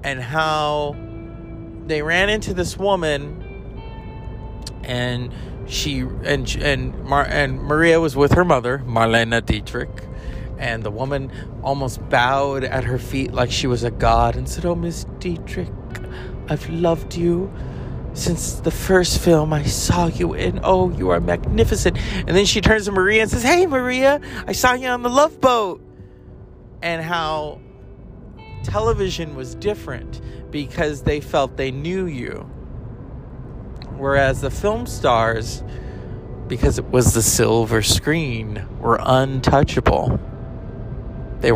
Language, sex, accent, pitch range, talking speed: English, male, American, 115-150 Hz, 135 wpm